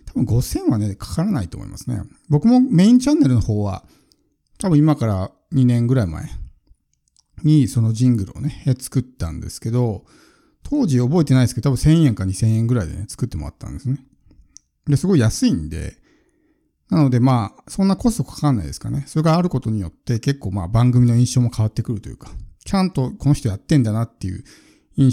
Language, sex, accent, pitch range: Japanese, male, native, 105-160 Hz